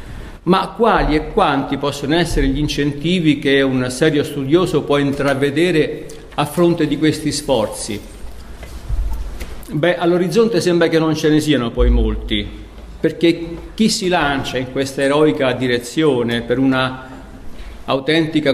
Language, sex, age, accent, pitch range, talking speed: Italian, male, 50-69, native, 125-165 Hz, 130 wpm